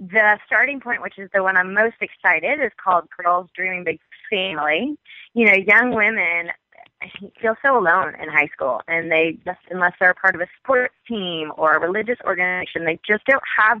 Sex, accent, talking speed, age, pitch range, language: female, American, 190 wpm, 20-39, 170-215 Hz, English